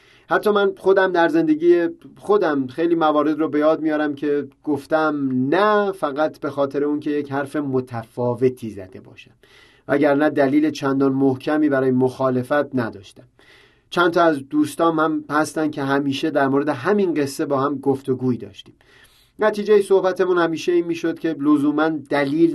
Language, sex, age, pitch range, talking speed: Persian, male, 30-49, 140-190 Hz, 145 wpm